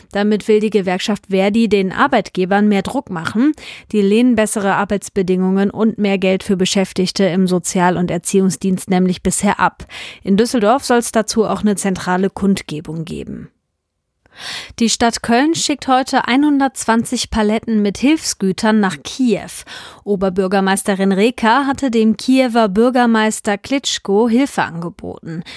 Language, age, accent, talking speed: German, 30-49, German, 130 wpm